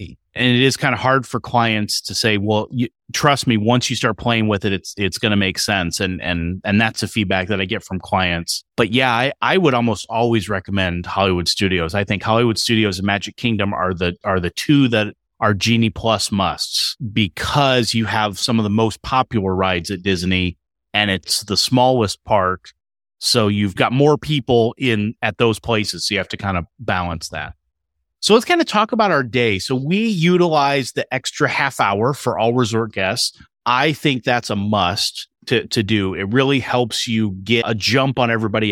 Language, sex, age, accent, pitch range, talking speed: English, male, 30-49, American, 100-125 Hz, 205 wpm